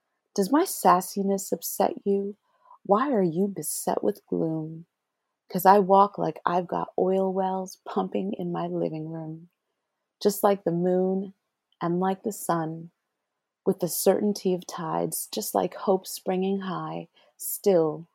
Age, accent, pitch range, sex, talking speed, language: 30-49, American, 165-200 Hz, female, 140 wpm, English